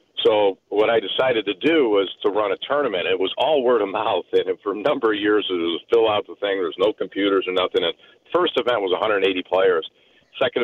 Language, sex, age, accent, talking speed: English, male, 50-69, American, 230 wpm